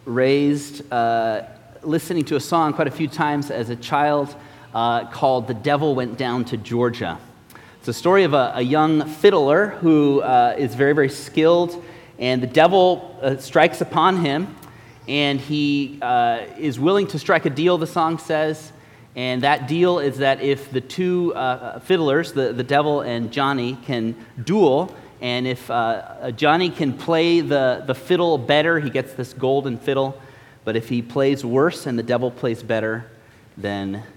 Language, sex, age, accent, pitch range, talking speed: English, male, 30-49, American, 120-160 Hz, 170 wpm